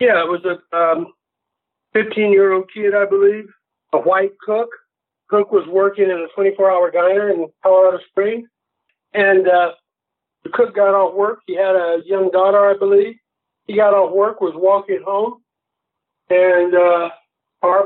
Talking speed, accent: 170 wpm, American